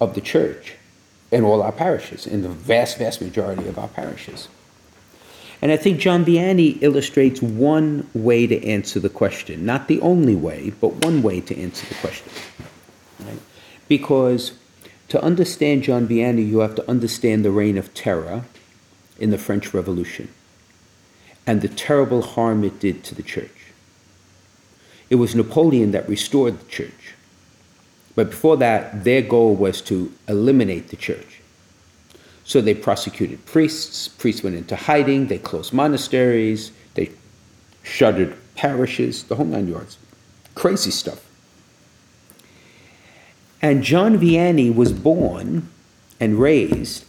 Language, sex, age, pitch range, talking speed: English, male, 50-69, 95-135 Hz, 135 wpm